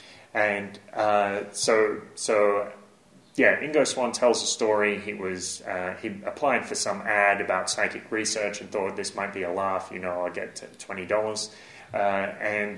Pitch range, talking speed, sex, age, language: 100-110 Hz, 165 wpm, male, 30-49, English